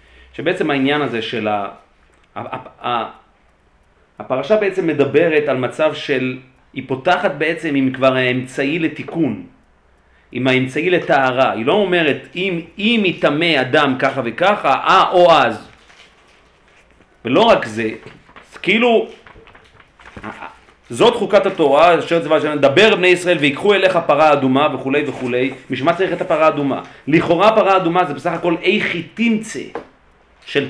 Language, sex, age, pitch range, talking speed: Hebrew, male, 40-59, 125-190 Hz, 135 wpm